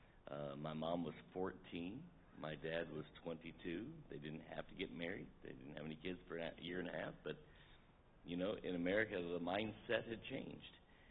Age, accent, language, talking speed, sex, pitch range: 60-79, American, English, 190 wpm, male, 80-90 Hz